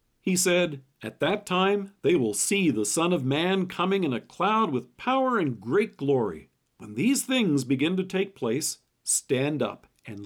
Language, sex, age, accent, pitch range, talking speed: English, male, 50-69, American, 130-195 Hz, 180 wpm